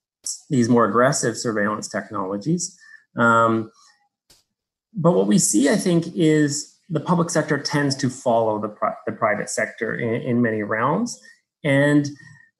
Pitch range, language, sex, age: 115-160 Hz, English, male, 30-49